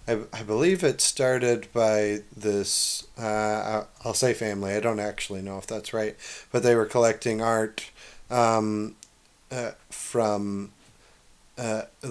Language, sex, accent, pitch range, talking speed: English, male, American, 105-125 Hz, 140 wpm